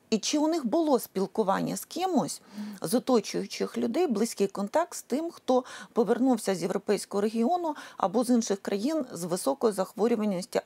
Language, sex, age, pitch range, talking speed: Ukrainian, female, 40-59, 195-260 Hz, 150 wpm